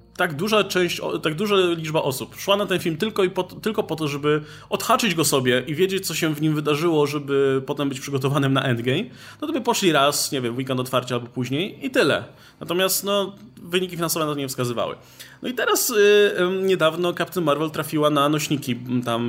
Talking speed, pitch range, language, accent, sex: 205 wpm, 125-185 Hz, Polish, native, male